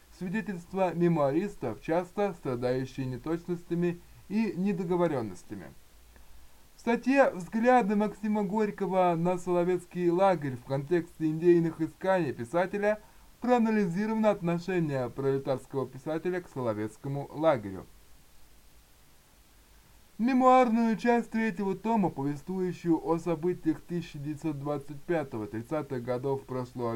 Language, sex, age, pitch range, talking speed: Russian, male, 20-39, 140-190 Hz, 80 wpm